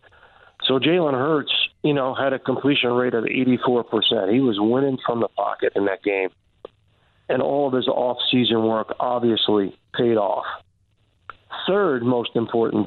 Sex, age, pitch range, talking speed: male, 50-69, 110-140 Hz, 150 wpm